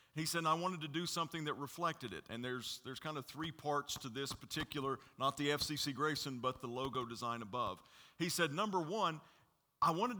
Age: 40-59